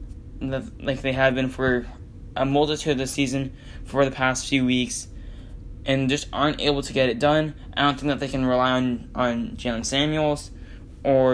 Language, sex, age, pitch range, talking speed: English, male, 10-29, 115-140 Hz, 190 wpm